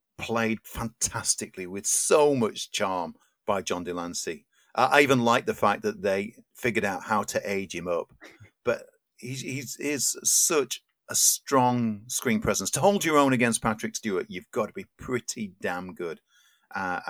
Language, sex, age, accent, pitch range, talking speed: English, male, 50-69, British, 95-125 Hz, 170 wpm